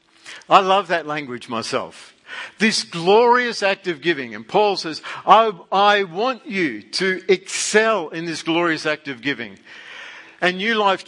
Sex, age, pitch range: male, 50-69, 115-180 Hz